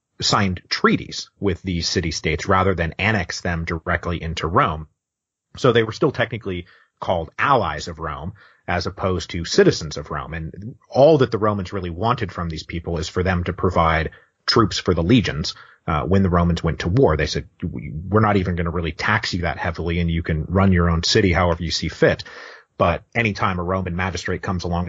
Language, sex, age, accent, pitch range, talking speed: English, male, 30-49, American, 85-105 Hz, 205 wpm